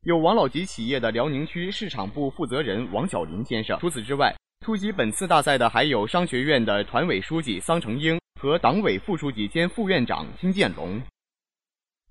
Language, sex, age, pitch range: Chinese, male, 20-39, 125-190 Hz